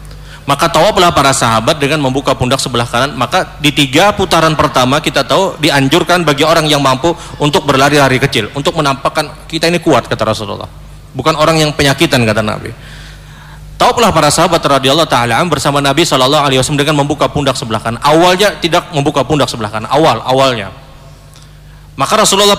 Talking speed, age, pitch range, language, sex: 160 wpm, 30-49, 135-170 Hz, Indonesian, male